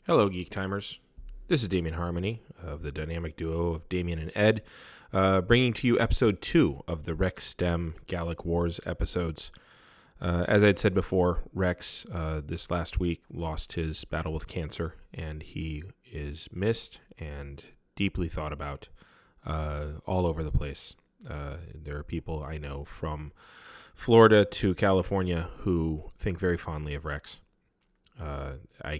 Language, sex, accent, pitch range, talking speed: English, male, American, 75-90 Hz, 155 wpm